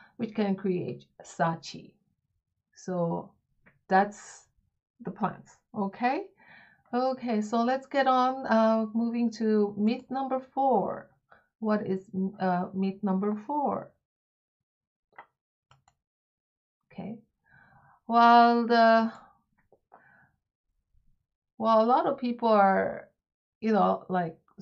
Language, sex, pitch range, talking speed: English, female, 185-225 Hz, 95 wpm